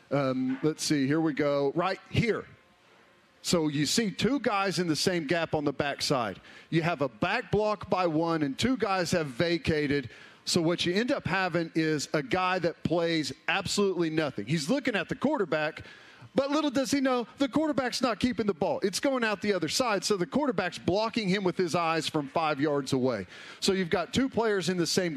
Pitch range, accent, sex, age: 160-205 Hz, American, male, 40-59